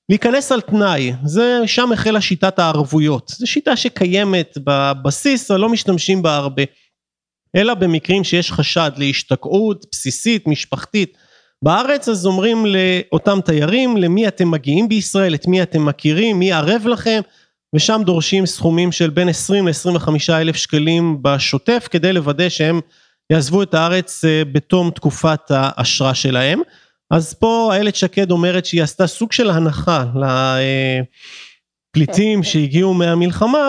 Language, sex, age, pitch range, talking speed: Hebrew, male, 30-49, 155-200 Hz, 130 wpm